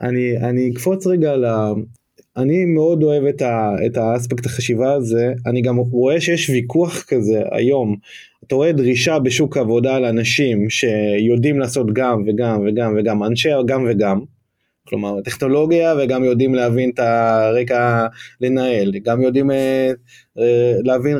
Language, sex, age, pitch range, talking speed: Hebrew, male, 20-39, 120-150 Hz, 135 wpm